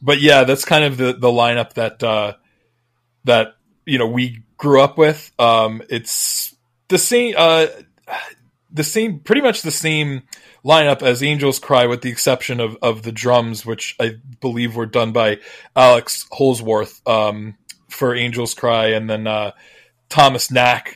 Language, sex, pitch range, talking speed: English, male, 110-130 Hz, 160 wpm